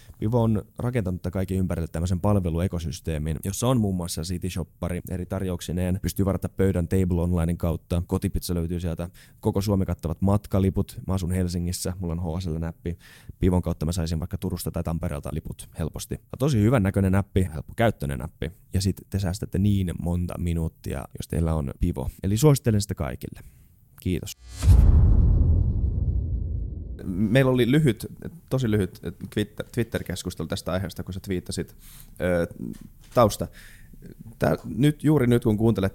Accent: native